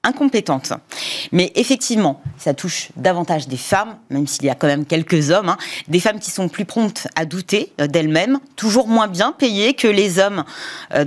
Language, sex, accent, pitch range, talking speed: French, female, French, 175-255 Hz, 185 wpm